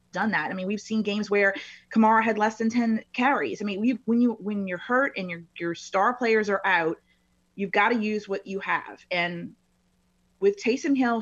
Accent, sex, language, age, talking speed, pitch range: American, female, English, 30-49, 215 wpm, 175-230 Hz